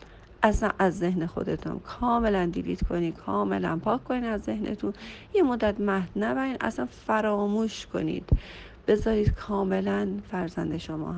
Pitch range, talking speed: 155-210 Hz, 125 wpm